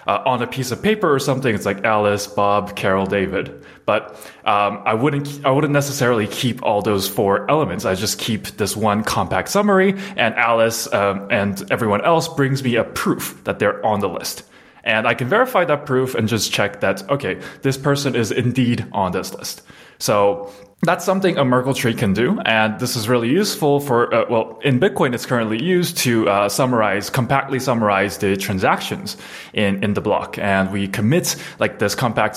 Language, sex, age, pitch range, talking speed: English, male, 20-39, 100-135 Hz, 195 wpm